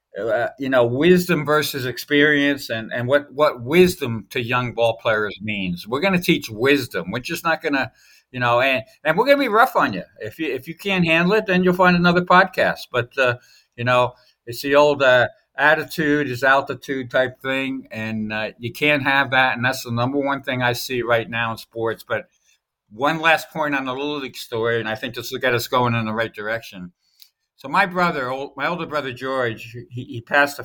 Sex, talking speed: male, 215 wpm